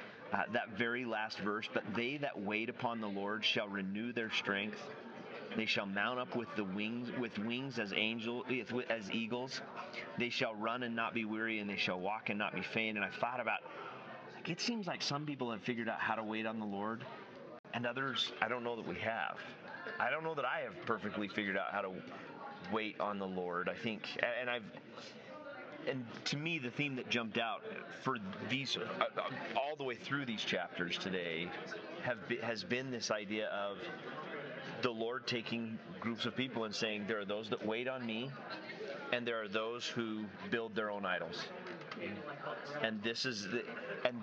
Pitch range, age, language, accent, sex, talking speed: 110-125 Hz, 30-49, English, American, male, 200 wpm